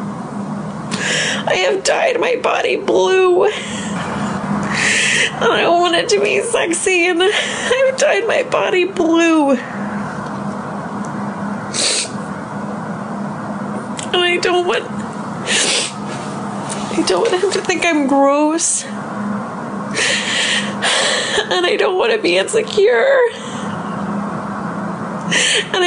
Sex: female